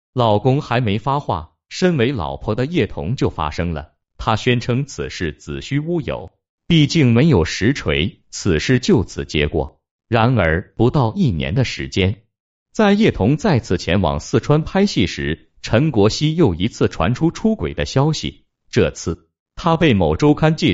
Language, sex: Chinese, male